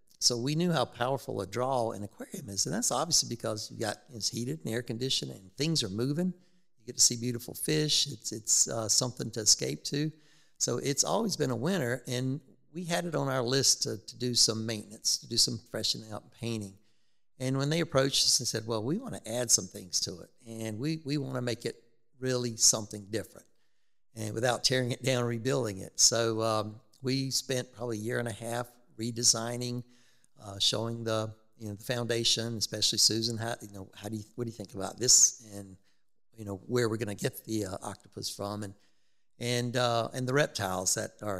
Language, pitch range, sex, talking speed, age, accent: English, 105-125 Hz, male, 215 wpm, 60-79, American